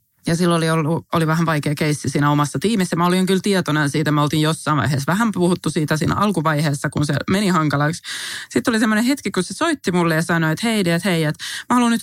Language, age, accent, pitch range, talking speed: Finnish, 20-39, native, 155-205 Hz, 240 wpm